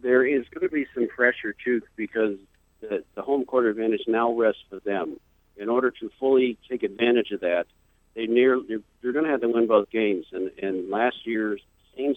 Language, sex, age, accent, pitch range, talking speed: English, male, 50-69, American, 100-120 Hz, 200 wpm